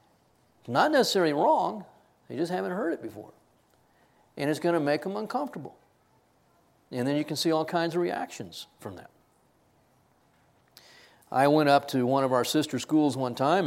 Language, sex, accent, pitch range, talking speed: English, male, American, 125-160 Hz, 165 wpm